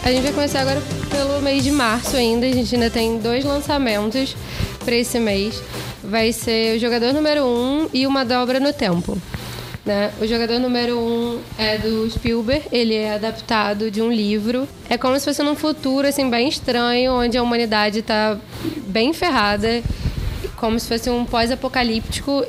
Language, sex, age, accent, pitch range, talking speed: Portuguese, female, 10-29, Brazilian, 220-255 Hz, 170 wpm